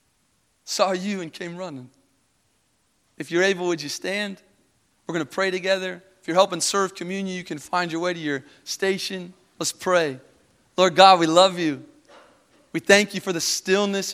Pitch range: 170-195 Hz